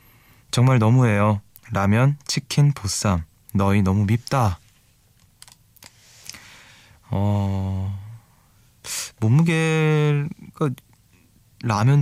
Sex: male